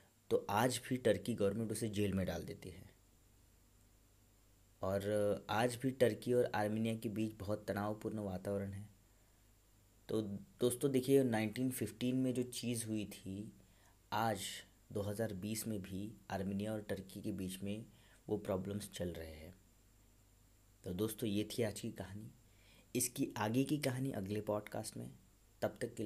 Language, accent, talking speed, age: Hindi, native, 145 wpm, 30-49